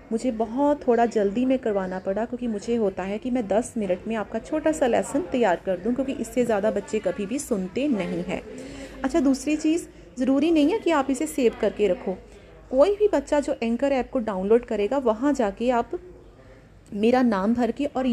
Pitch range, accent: 210-265 Hz, native